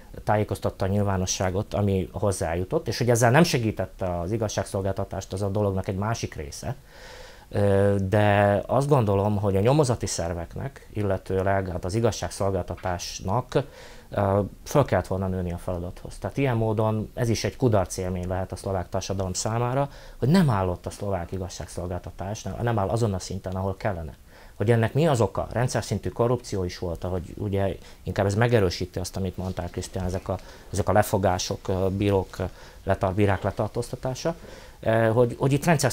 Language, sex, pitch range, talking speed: Hungarian, male, 95-115 Hz, 150 wpm